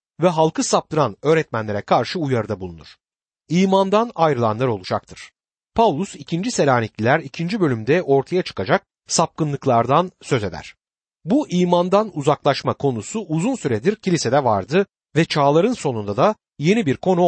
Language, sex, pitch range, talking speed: Turkish, male, 120-190 Hz, 120 wpm